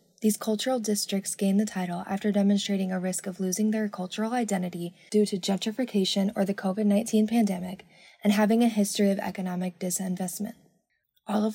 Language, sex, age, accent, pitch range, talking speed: English, female, 10-29, American, 185-210 Hz, 160 wpm